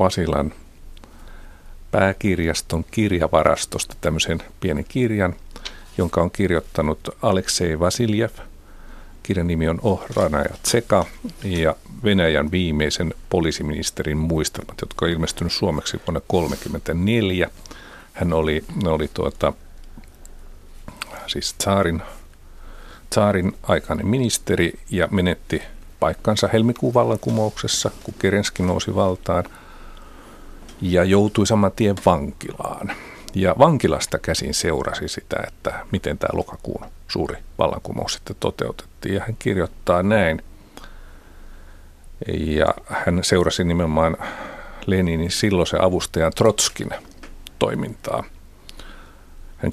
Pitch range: 80-100 Hz